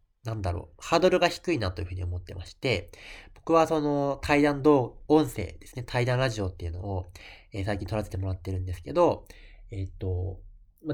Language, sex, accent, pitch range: Japanese, male, native, 95-125 Hz